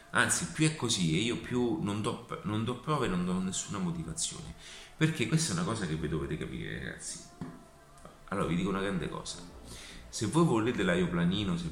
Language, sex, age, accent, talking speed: Italian, male, 30-49, native, 195 wpm